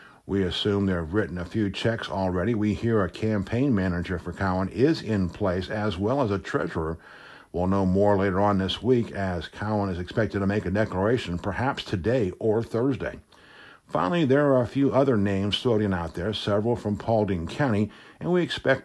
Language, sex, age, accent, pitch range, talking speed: English, male, 60-79, American, 95-120 Hz, 190 wpm